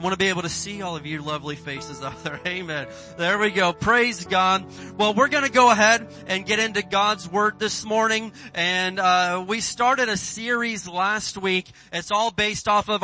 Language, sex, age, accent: English, male, 30-49, American